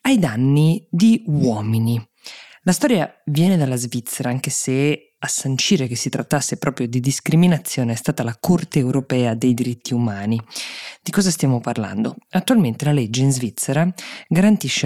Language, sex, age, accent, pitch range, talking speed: Italian, female, 20-39, native, 125-170 Hz, 150 wpm